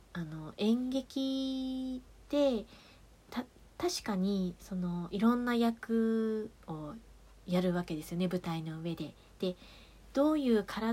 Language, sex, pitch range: Japanese, female, 170-220 Hz